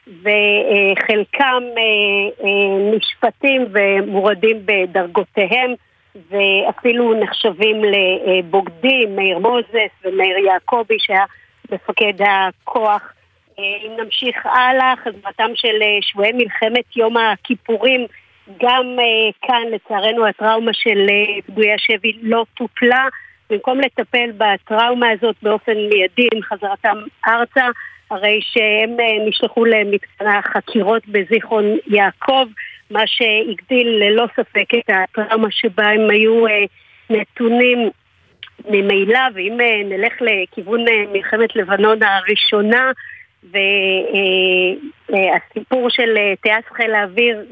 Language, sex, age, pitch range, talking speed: Hebrew, female, 50-69, 205-235 Hz, 90 wpm